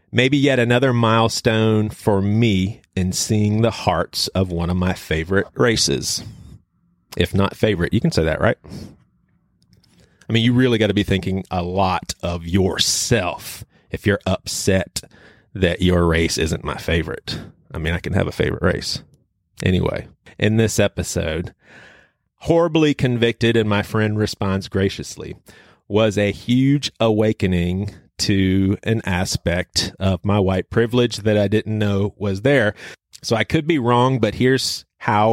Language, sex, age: English, male, 30-49